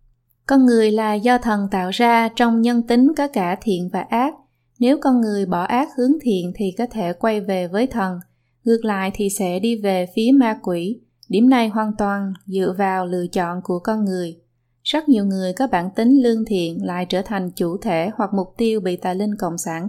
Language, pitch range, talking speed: Vietnamese, 180-230 Hz, 210 wpm